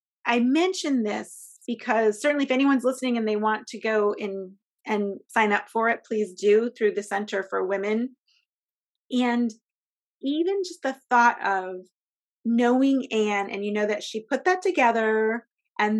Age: 30-49